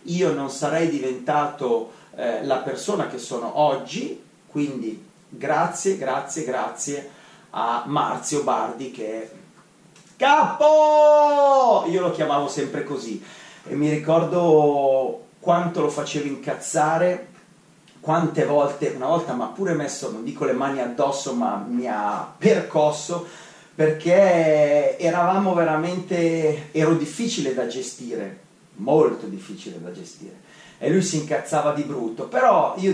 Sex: male